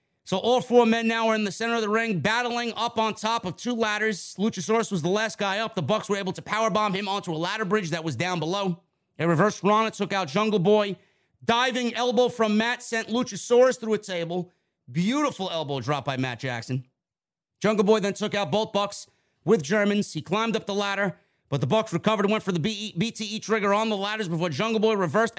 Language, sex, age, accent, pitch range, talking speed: English, male, 30-49, American, 155-210 Hz, 220 wpm